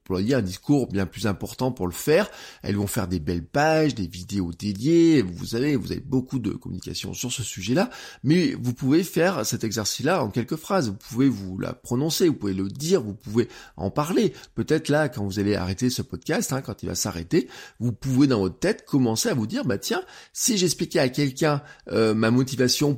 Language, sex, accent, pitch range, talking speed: French, male, French, 105-150 Hz, 215 wpm